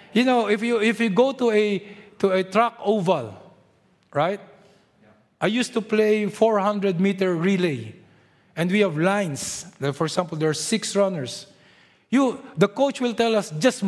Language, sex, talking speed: English, male, 170 wpm